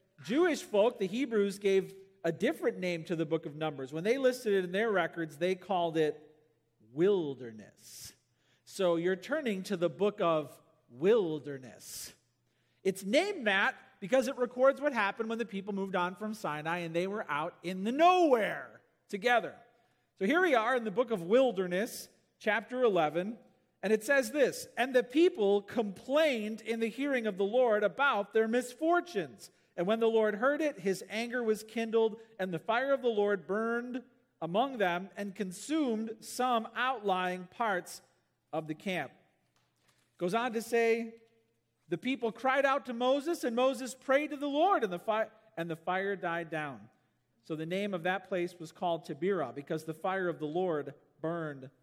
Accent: American